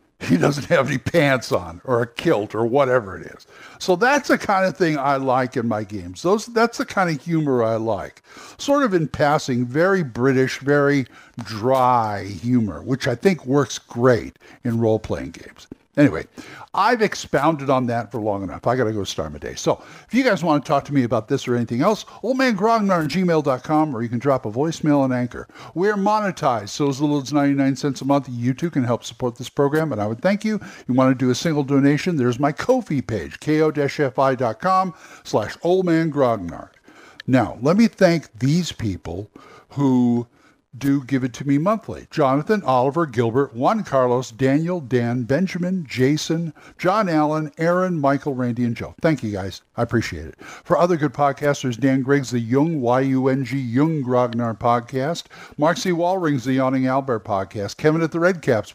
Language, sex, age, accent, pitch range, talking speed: English, male, 60-79, American, 125-165 Hz, 190 wpm